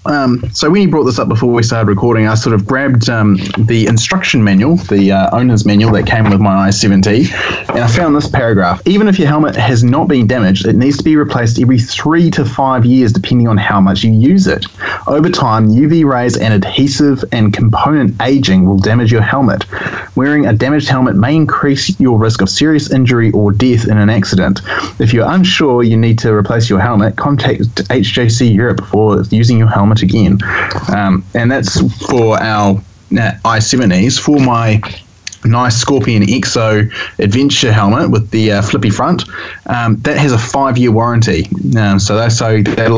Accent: Australian